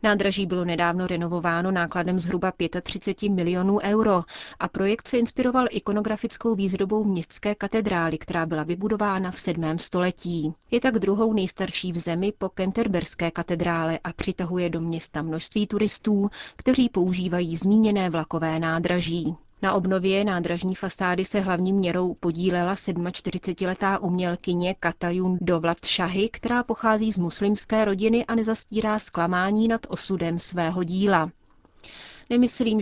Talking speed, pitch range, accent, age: 130 wpm, 175-205 Hz, native, 30-49